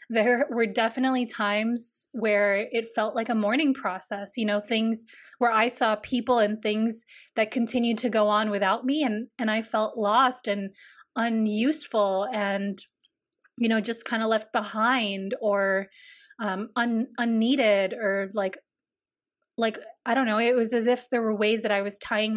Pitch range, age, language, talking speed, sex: 205-245 Hz, 20-39, English, 165 wpm, female